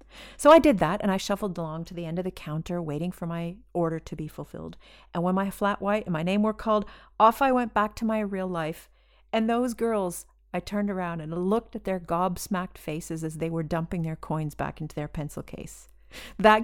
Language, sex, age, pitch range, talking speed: English, female, 40-59, 165-225 Hz, 225 wpm